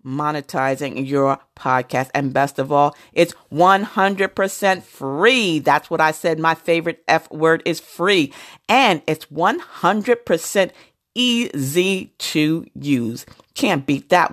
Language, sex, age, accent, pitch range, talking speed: English, female, 40-59, American, 140-190 Hz, 120 wpm